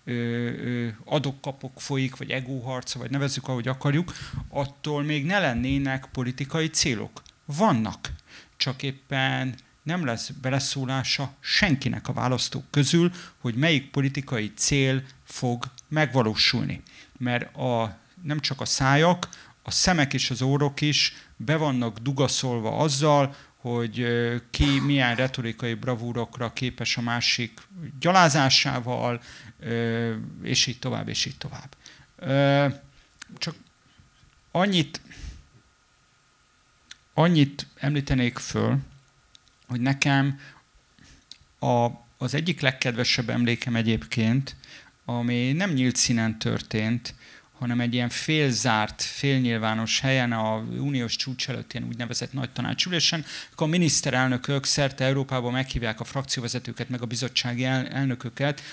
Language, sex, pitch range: Hungarian, male, 120-140 Hz